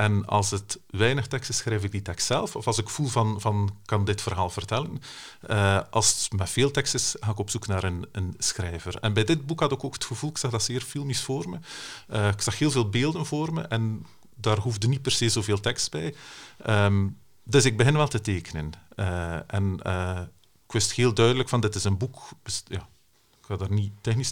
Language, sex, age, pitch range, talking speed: Dutch, male, 40-59, 100-120 Hz, 235 wpm